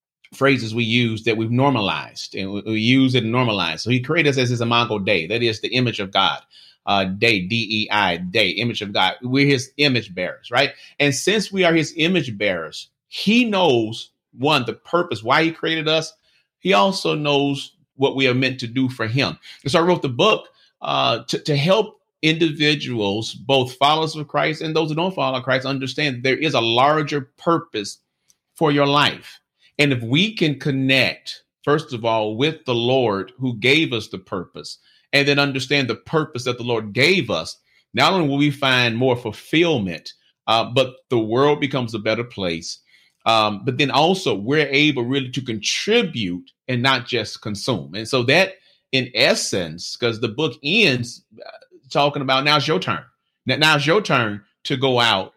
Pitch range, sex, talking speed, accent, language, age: 115-150 Hz, male, 185 wpm, American, English, 30-49